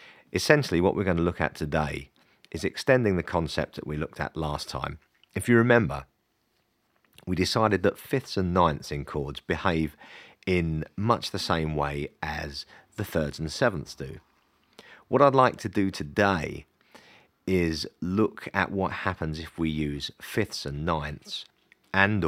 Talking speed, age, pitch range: 160 wpm, 40-59, 75-95 Hz